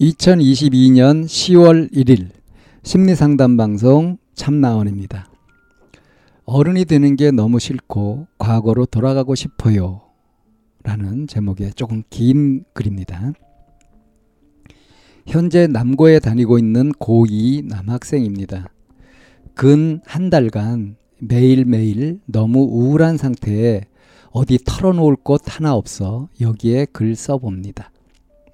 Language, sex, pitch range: Korean, male, 110-150 Hz